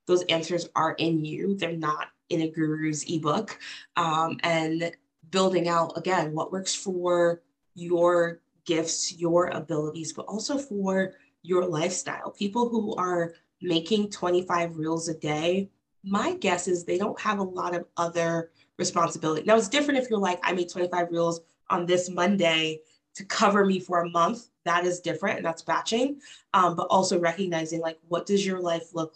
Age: 20-39